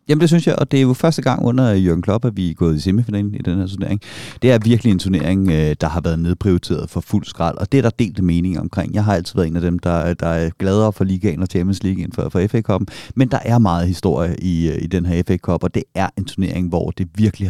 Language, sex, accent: Danish, male, native